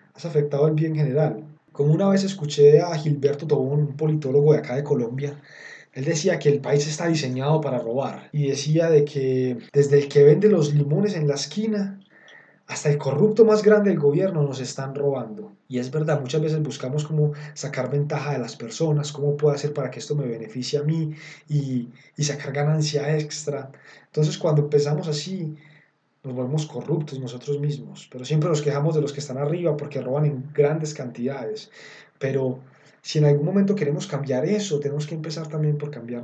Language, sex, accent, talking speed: Spanish, male, Colombian, 190 wpm